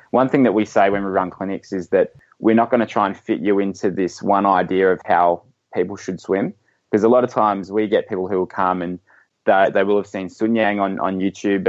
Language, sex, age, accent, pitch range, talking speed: English, male, 20-39, Australian, 95-110 Hz, 255 wpm